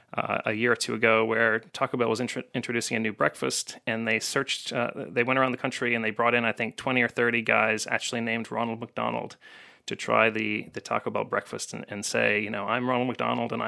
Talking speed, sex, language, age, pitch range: 235 wpm, male, English, 30-49, 115-130 Hz